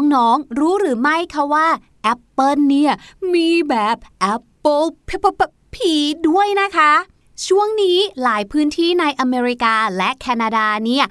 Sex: female